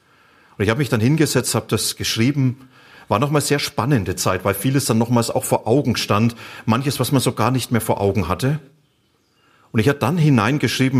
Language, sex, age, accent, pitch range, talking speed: German, male, 40-59, German, 105-130 Hz, 205 wpm